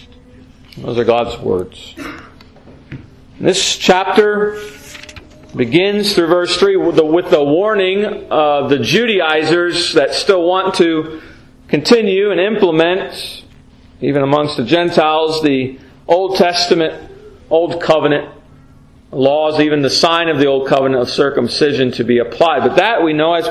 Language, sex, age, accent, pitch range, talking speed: English, male, 40-59, American, 145-180 Hz, 130 wpm